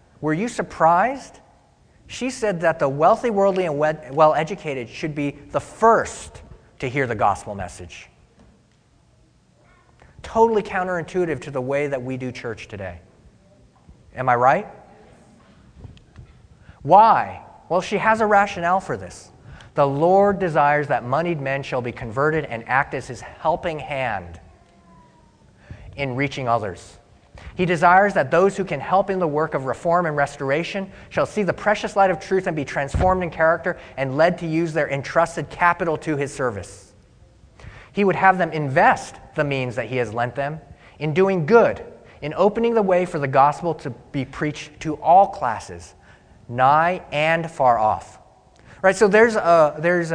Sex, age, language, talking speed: male, 30-49, English, 160 wpm